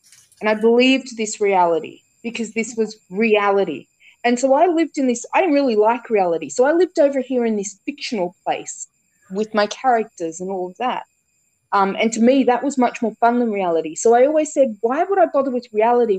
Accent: Australian